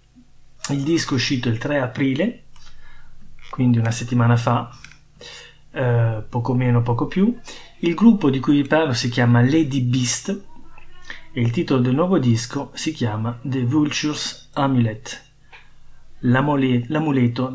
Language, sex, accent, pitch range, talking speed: Italian, male, native, 120-145 Hz, 135 wpm